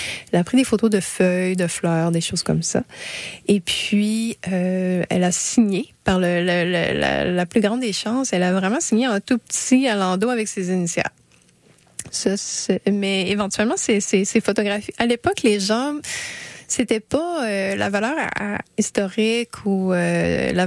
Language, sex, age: French, female, 30-49